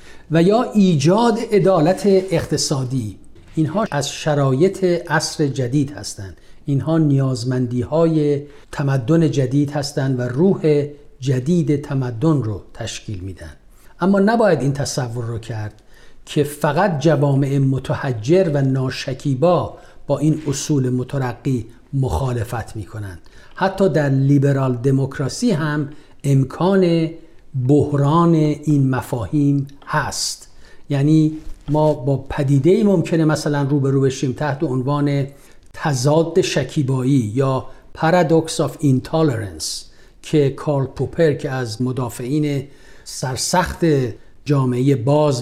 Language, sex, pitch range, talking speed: Persian, male, 130-160 Hz, 100 wpm